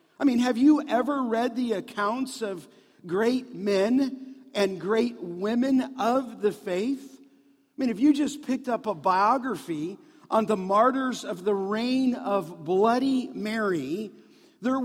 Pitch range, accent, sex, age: 215-270 Hz, American, male, 50-69